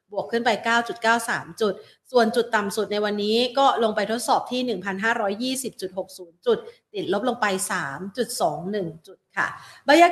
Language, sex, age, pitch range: Thai, female, 30-49, 195-245 Hz